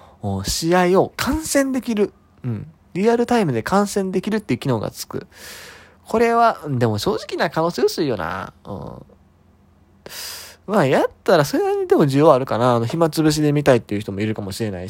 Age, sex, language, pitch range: 20-39, male, Japanese, 105-170 Hz